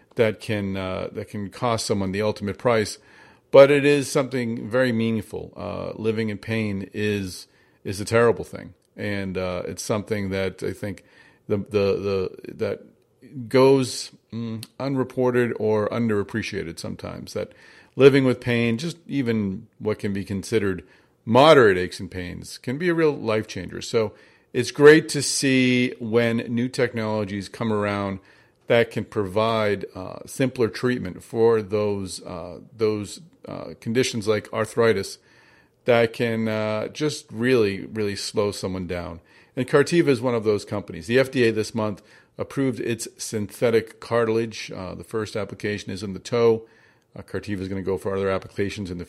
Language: English